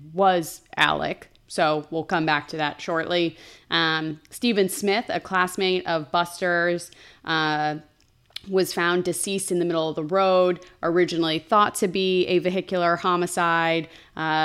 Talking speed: 135 wpm